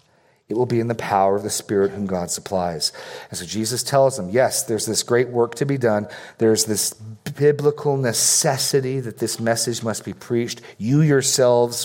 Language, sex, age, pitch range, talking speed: English, male, 40-59, 110-130 Hz, 185 wpm